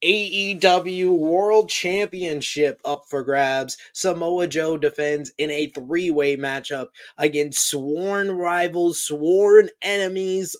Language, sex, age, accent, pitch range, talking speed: English, male, 20-39, American, 145-180 Hz, 100 wpm